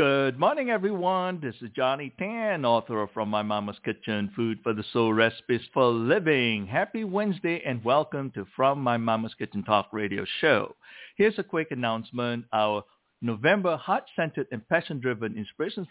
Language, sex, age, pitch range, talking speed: English, male, 60-79, 110-165 Hz, 160 wpm